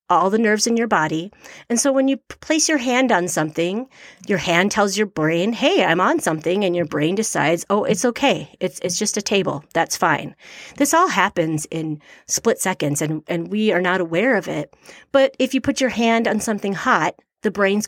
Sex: female